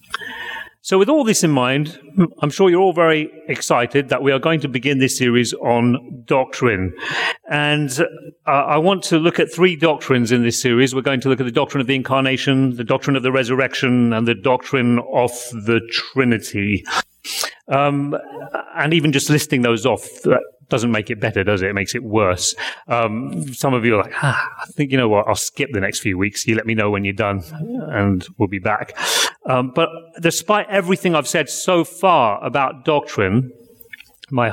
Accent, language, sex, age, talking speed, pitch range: British, English, male, 30-49, 195 wpm, 105-145 Hz